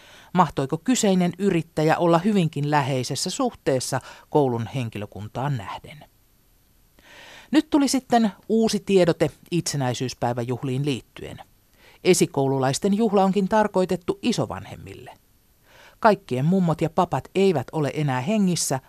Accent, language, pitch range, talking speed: native, Finnish, 125-190 Hz, 95 wpm